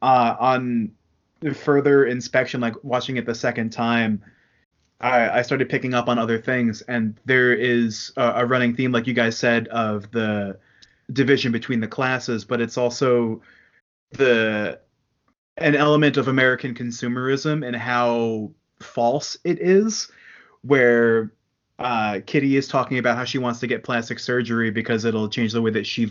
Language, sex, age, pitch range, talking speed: English, male, 30-49, 110-130 Hz, 160 wpm